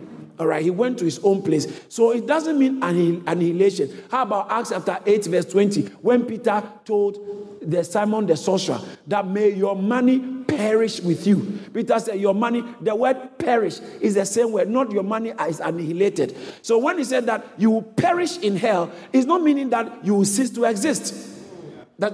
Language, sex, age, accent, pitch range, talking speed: English, male, 50-69, Nigerian, 180-240 Hz, 190 wpm